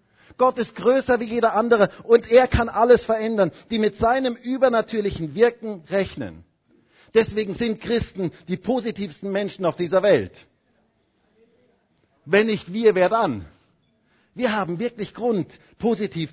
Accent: German